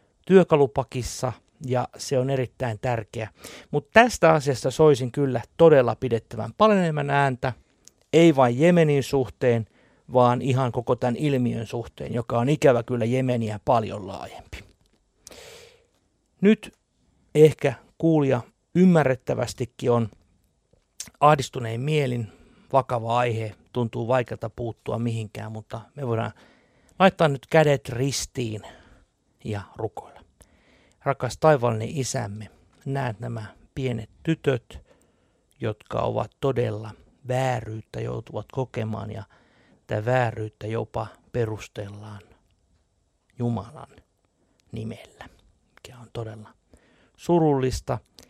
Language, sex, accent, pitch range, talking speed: Finnish, male, native, 110-140 Hz, 95 wpm